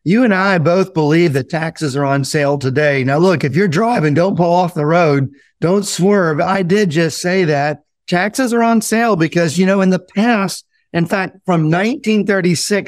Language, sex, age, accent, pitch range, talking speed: English, male, 50-69, American, 150-190 Hz, 195 wpm